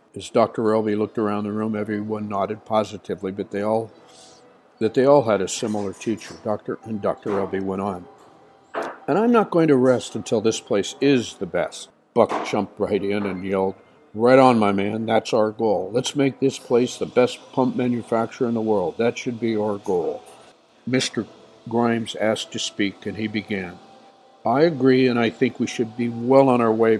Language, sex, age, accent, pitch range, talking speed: English, male, 60-79, American, 105-130 Hz, 195 wpm